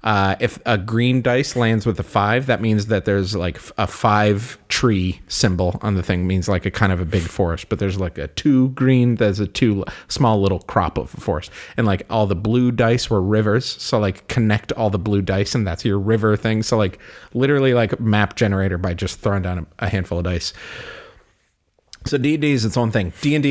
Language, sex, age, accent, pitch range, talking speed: English, male, 30-49, American, 95-115 Hz, 220 wpm